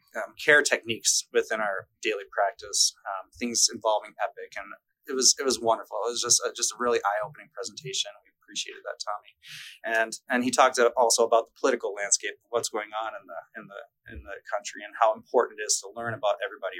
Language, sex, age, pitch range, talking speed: English, male, 30-49, 110-160 Hz, 205 wpm